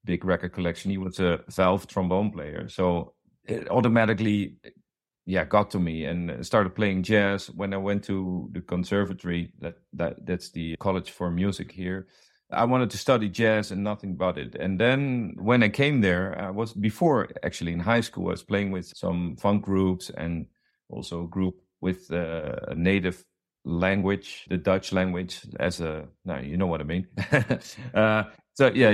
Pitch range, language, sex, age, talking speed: 90-100 Hz, English, male, 50-69, 175 wpm